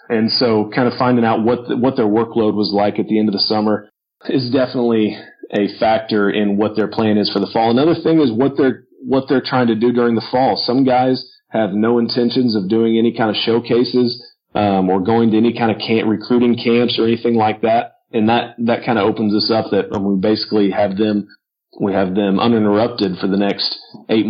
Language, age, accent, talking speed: English, 40-59, American, 220 wpm